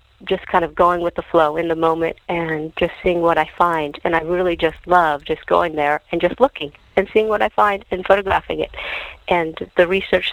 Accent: American